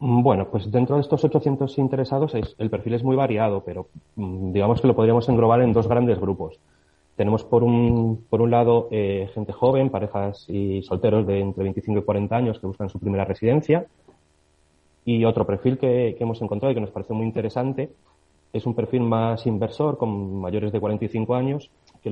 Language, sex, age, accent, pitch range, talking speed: Spanish, male, 30-49, Spanish, 95-115 Hz, 185 wpm